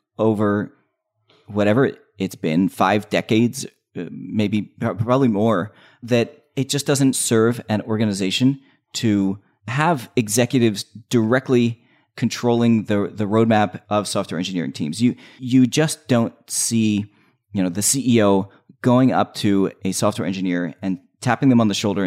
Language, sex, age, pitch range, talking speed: English, male, 30-49, 100-125 Hz, 135 wpm